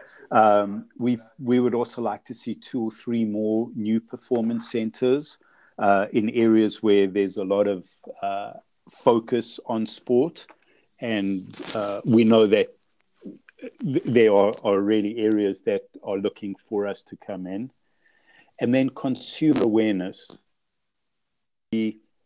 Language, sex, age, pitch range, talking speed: English, male, 50-69, 105-120 Hz, 135 wpm